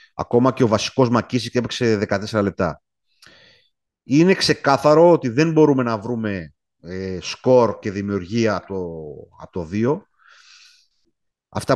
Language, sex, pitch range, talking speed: Greek, male, 100-135 Hz, 120 wpm